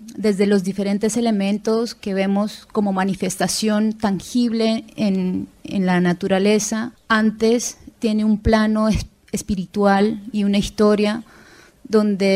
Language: Spanish